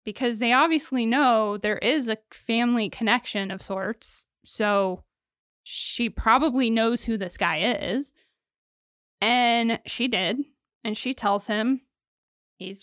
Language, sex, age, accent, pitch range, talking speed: English, female, 20-39, American, 200-245 Hz, 125 wpm